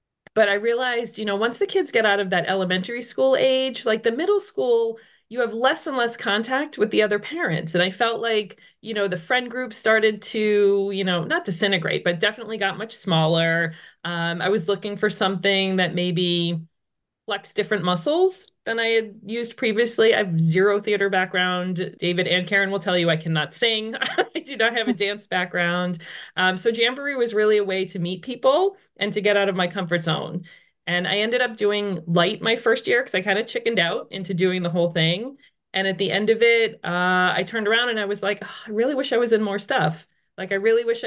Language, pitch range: English, 180-230 Hz